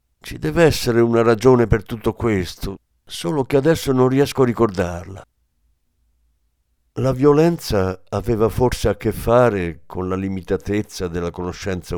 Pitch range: 85-125 Hz